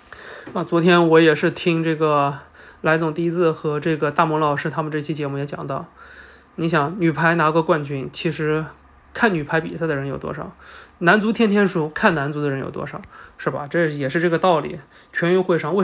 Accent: native